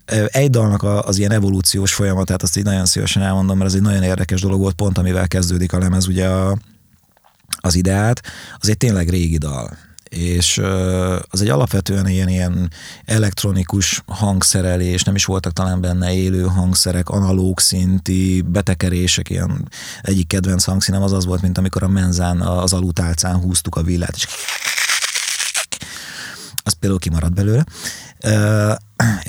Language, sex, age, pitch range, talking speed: Hungarian, male, 30-49, 90-105 Hz, 150 wpm